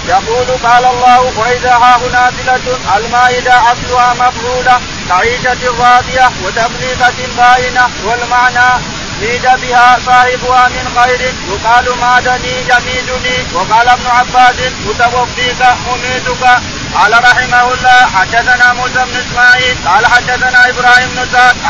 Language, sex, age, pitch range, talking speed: Arabic, male, 40-59, 245-250 Hz, 105 wpm